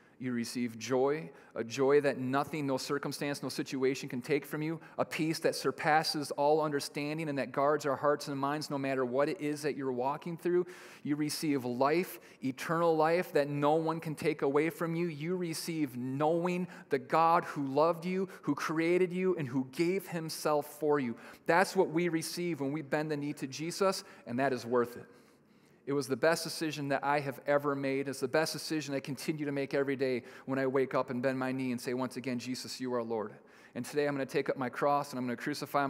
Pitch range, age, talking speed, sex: 140-165 Hz, 30-49, 220 wpm, male